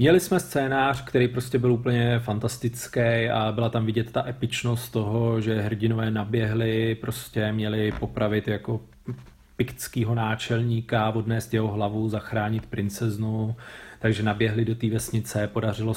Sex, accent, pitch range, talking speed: male, native, 110-120 Hz, 125 wpm